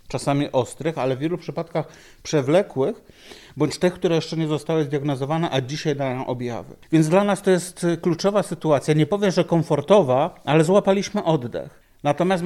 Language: Polish